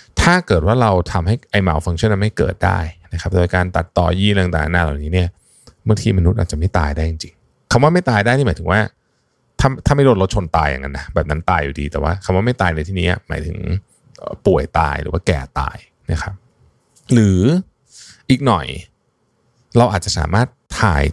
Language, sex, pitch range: Thai, male, 85-120 Hz